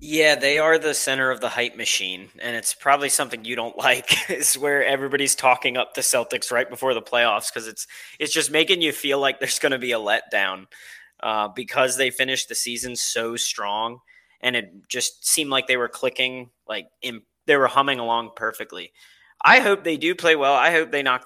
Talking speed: 210 wpm